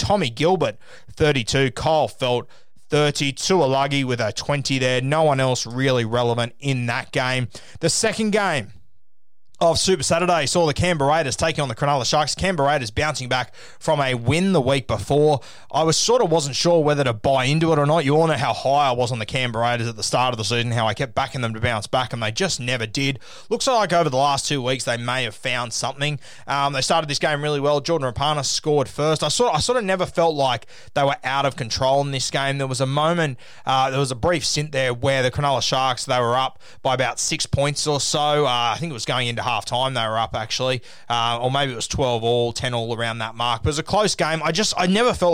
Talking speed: 245 wpm